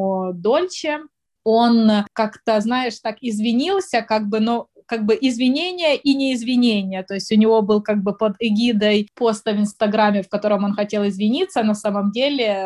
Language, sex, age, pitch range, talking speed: Russian, female, 20-39, 195-220 Hz, 160 wpm